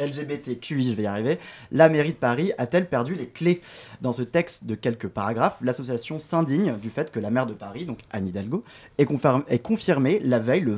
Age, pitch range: 20-39, 115-155 Hz